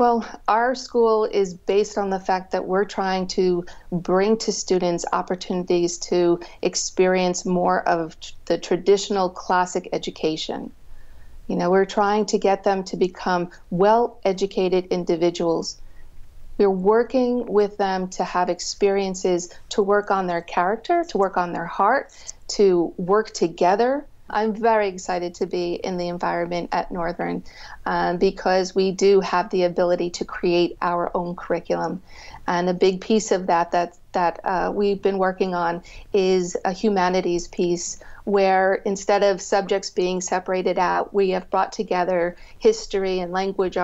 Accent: American